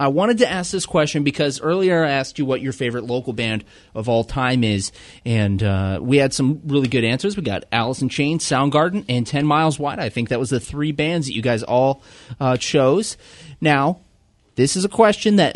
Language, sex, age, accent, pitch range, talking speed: English, male, 30-49, American, 120-155 Hz, 220 wpm